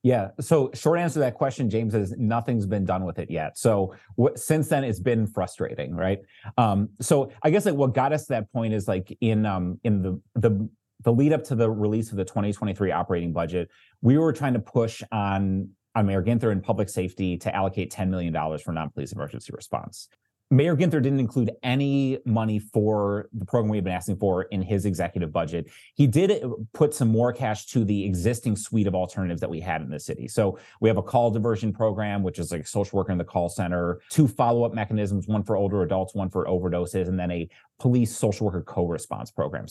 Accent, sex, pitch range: American, male, 95-120 Hz